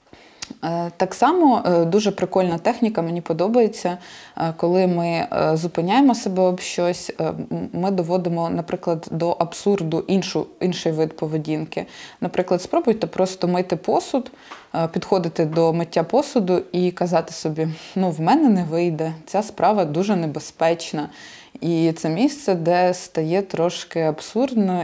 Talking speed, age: 120 wpm, 20-39